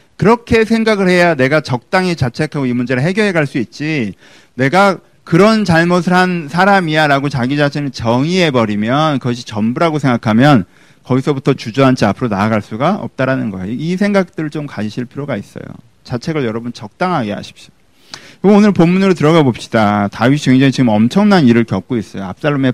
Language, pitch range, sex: Korean, 125-195 Hz, male